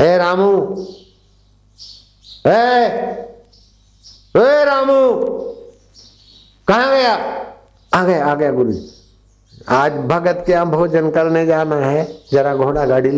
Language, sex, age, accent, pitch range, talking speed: Hindi, male, 60-79, native, 100-155 Hz, 100 wpm